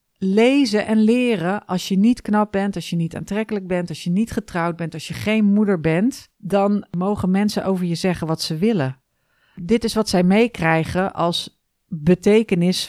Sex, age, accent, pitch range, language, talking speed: female, 40-59, Dutch, 160-205 Hz, Dutch, 180 wpm